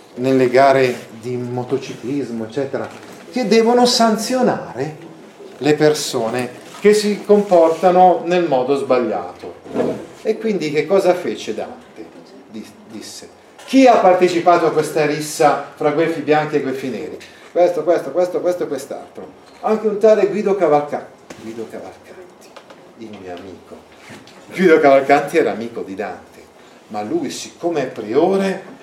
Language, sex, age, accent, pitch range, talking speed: Italian, male, 40-59, native, 130-180 Hz, 130 wpm